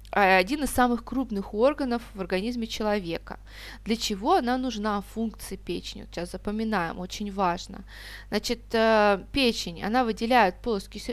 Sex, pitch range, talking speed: female, 195-255 Hz, 125 wpm